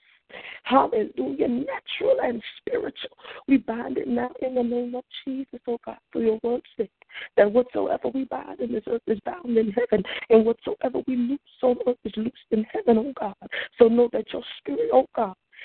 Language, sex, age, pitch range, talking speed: English, female, 40-59, 225-290 Hz, 195 wpm